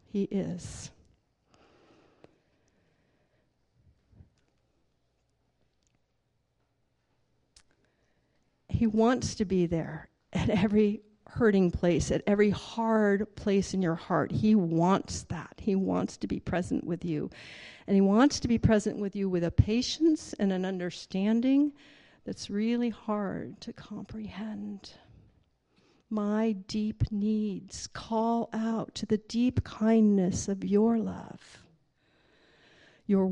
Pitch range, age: 195-240 Hz, 50-69